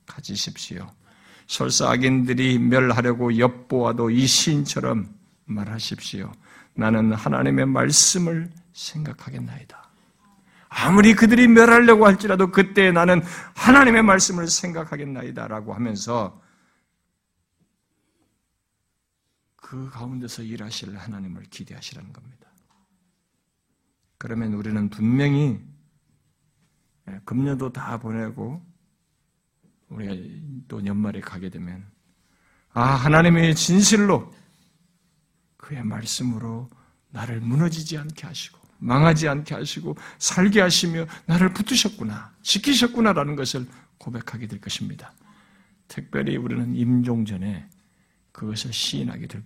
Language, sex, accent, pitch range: Korean, male, native, 110-170 Hz